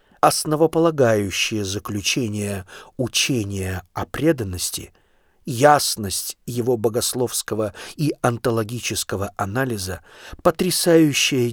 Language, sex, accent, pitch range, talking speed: Russian, male, native, 105-150 Hz, 60 wpm